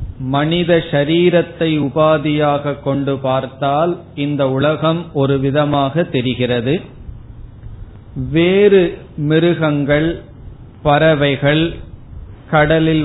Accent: native